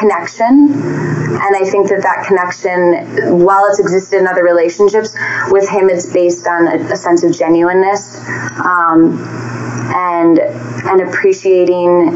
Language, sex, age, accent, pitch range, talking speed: English, female, 20-39, American, 165-190 Hz, 135 wpm